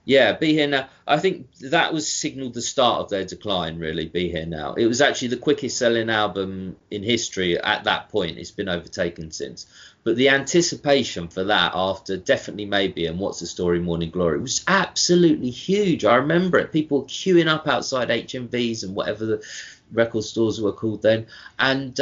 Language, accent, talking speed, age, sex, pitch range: English, British, 185 wpm, 30-49, male, 105-145 Hz